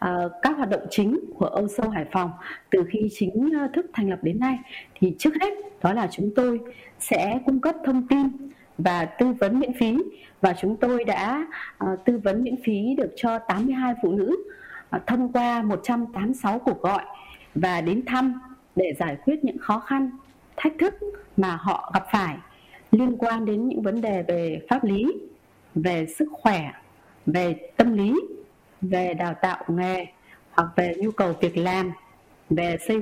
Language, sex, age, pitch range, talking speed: Vietnamese, female, 20-39, 185-260 Hz, 170 wpm